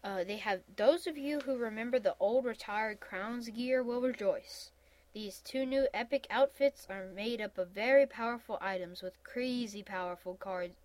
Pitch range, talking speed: 185-255 Hz, 170 wpm